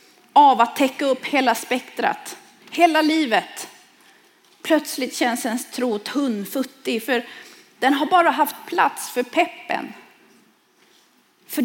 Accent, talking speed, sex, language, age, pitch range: native, 115 wpm, female, Swedish, 30-49, 245-335 Hz